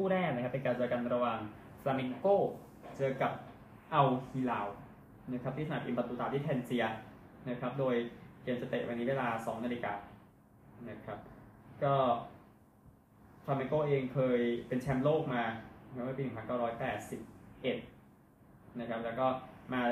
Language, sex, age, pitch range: Thai, male, 20-39, 110-130 Hz